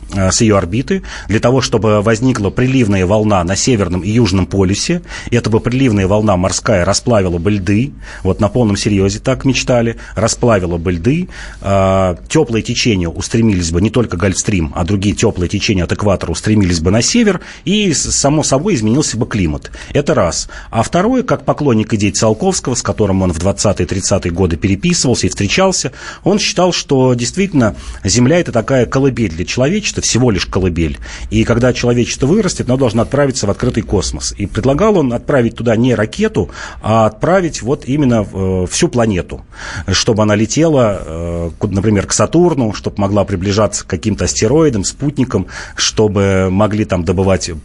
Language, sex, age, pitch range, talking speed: Russian, male, 30-49, 95-130 Hz, 155 wpm